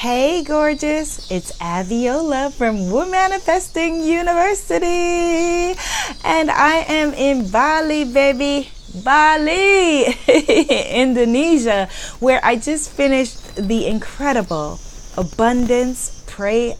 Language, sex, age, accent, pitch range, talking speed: English, female, 30-49, American, 160-255 Hz, 80 wpm